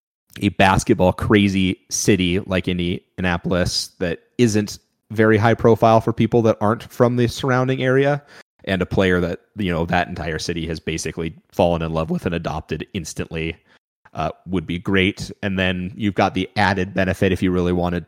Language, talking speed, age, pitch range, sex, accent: English, 175 wpm, 30-49, 85-100 Hz, male, American